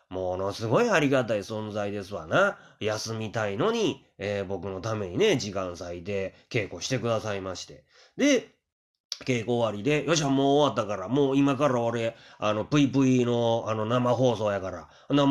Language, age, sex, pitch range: Japanese, 30-49, male, 95-130 Hz